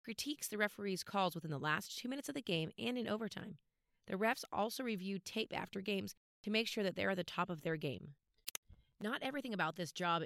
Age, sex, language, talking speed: 30-49, female, English, 220 wpm